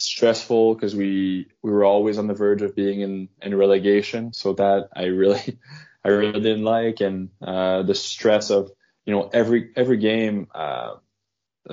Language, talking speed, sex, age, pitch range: Swedish, 170 wpm, male, 20-39, 100-110 Hz